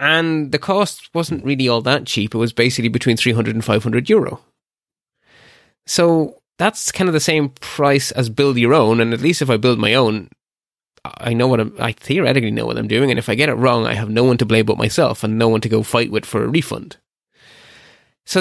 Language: English